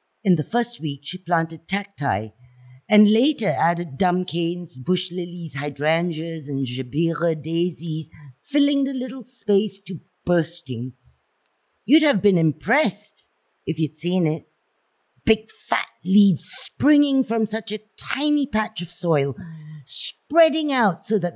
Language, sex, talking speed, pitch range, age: English, female, 130 wpm, 150-215 Hz, 50-69